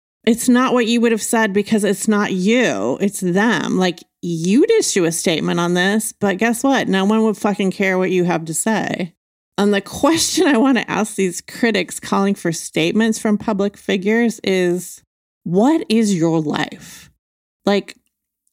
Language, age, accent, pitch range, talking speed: English, 30-49, American, 175-225 Hz, 175 wpm